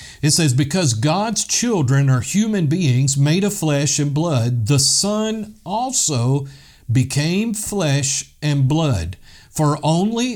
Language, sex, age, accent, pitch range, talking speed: English, male, 50-69, American, 130-170 Hz, 125 wpm